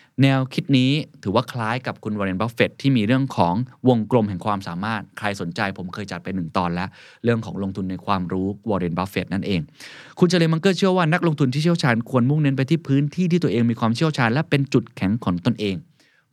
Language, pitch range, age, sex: Thai, 100-135 Hz, 20-39, male